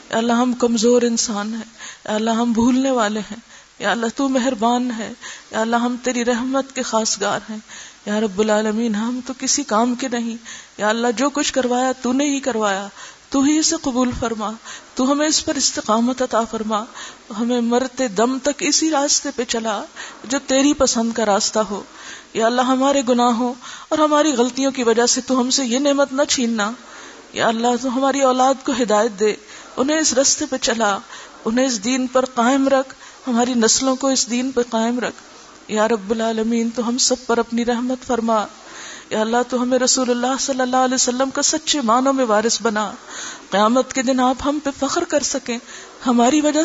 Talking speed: 175 wpm